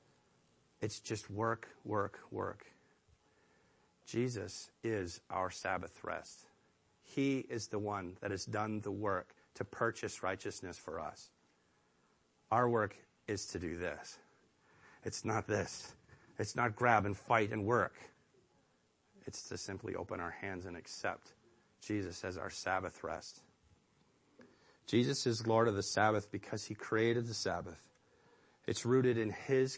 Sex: male